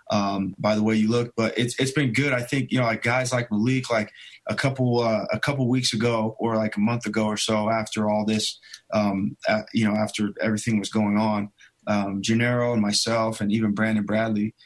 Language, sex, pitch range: English, male, 105-115 Hz